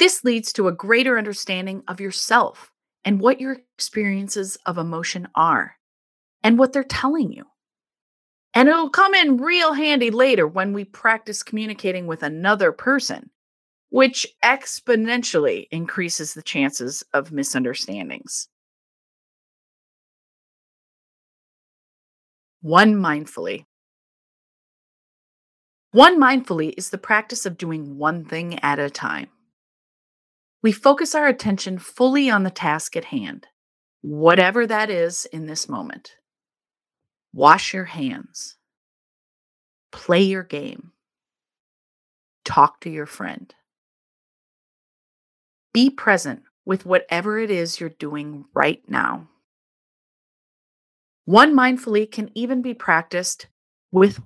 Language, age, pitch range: English, 30-49, 170-255 Hz